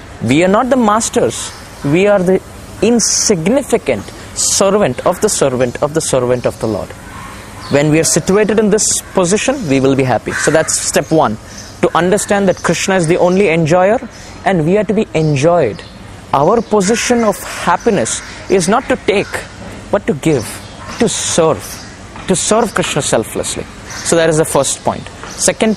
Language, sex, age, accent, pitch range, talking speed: Hindi, male, 20-39, native, 135-210 Hz, 170 wpm